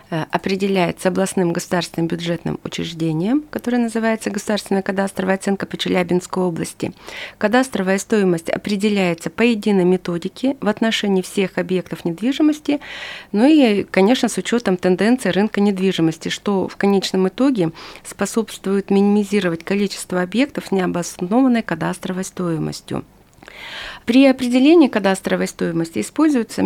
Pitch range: 185-245 Hz